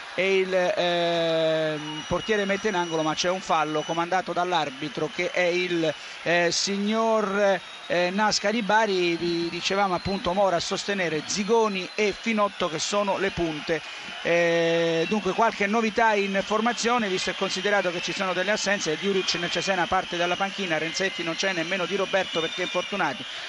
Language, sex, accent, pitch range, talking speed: Italian, male, native, 185-225 Hz, 160 wpm